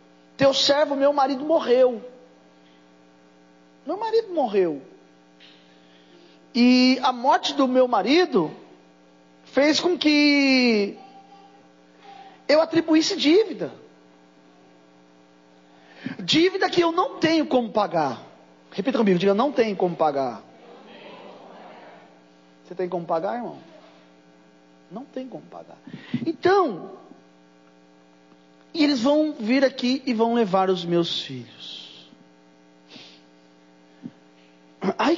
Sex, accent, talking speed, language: male, Brazilian, 95 wpm, Portuguese